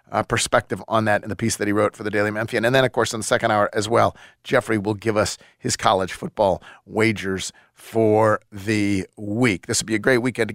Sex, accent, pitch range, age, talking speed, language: male, American, 100-120 Hz, 40-59, 240 wpm, English